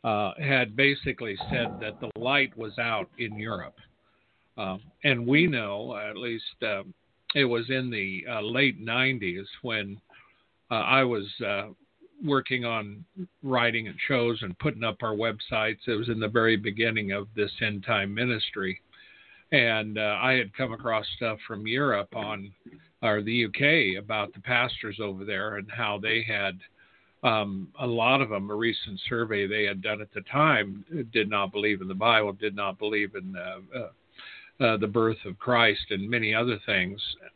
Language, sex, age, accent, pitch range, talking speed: English, male, 50-69, American, 105-130 Hz, 175 wpm